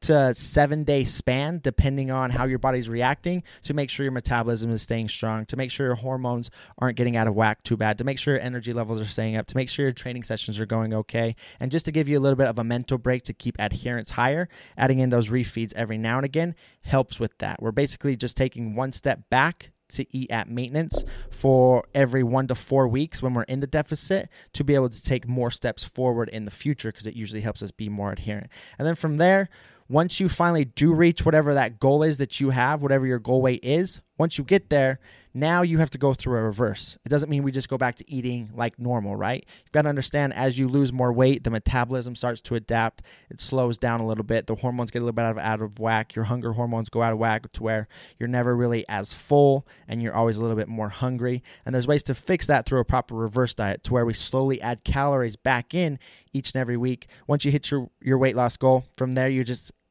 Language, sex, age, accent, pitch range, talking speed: English, male, 20-39, American, 115-135 Hz, 245 wpm